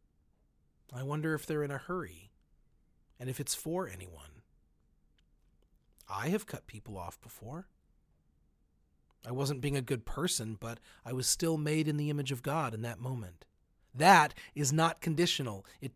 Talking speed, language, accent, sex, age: 160 wpm, English, American, male, 40-59